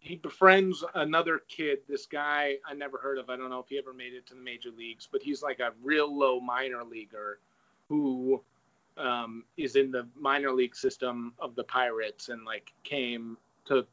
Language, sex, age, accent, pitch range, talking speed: English, male, 30-49, American, 125-150 Hz, 195 wpm